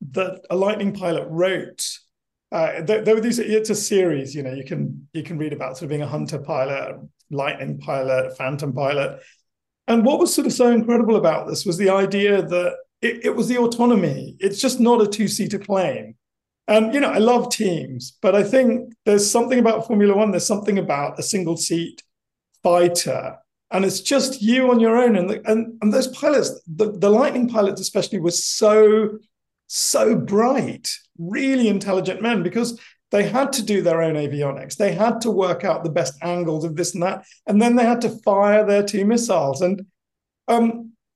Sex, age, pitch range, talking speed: male, 50-69, 175-230 Hz, 200 wpm